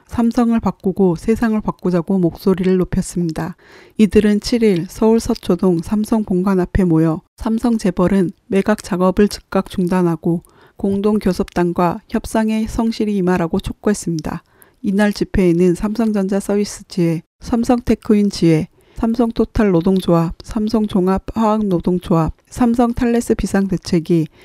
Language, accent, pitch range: Korean, native, 180-215 Hz